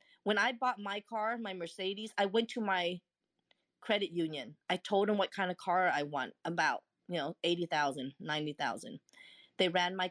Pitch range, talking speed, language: 175-210 Hz, 180 wpm, English